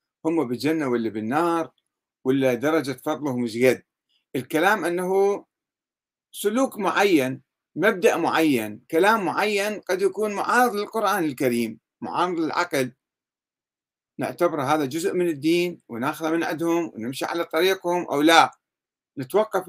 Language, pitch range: Arabic, 140-200 Hz